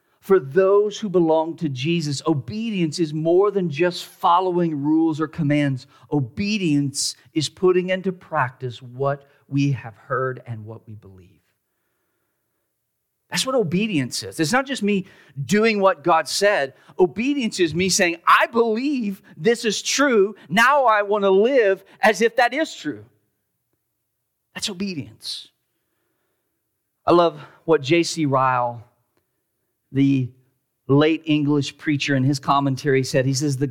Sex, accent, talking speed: male, American, 135 wpm